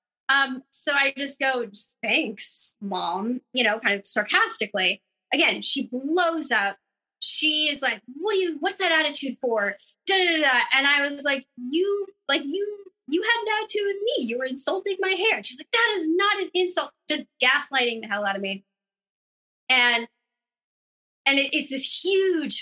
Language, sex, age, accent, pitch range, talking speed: English, female, 20-39, American, 230-315 Hz, 165 wpm